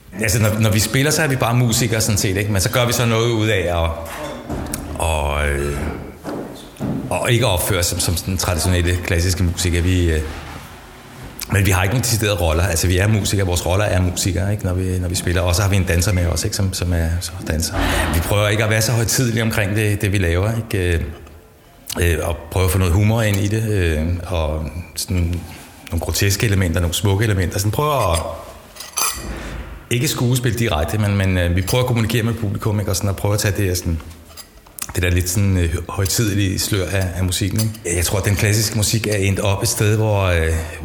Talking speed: 215 wpm